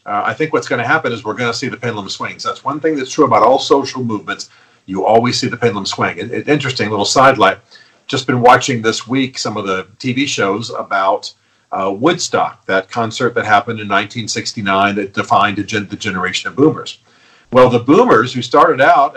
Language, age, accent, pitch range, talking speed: English, 50-69, American, 110-155 Hz, 210 wpm